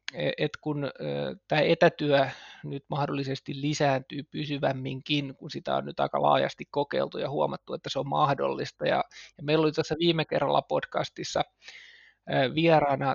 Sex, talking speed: male, 135 wpm